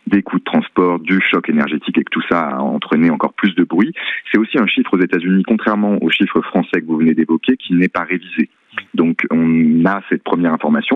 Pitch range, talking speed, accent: 85-110 Hz, 230 wpm, French